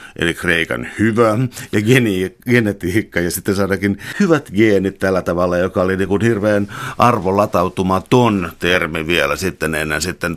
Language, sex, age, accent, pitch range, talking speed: Finnish, male, 50-69, native, 90-105 Hz, 125 wpm